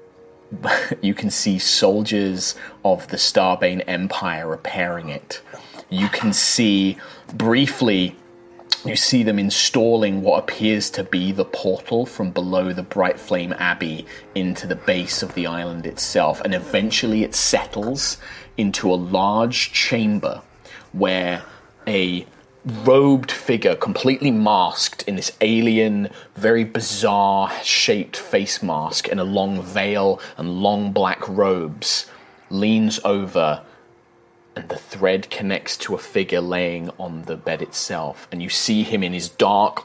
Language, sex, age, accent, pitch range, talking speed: English, male, 30-49, British, 90-110 Hz, 135 wpm